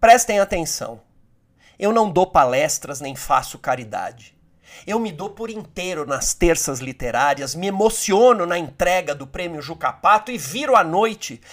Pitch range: 135-200 Hz